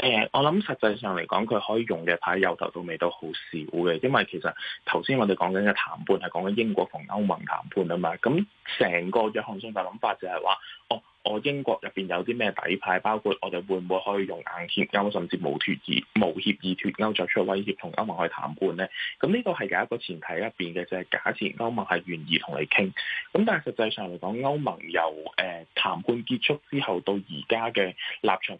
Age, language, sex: 20-39, Chinese, male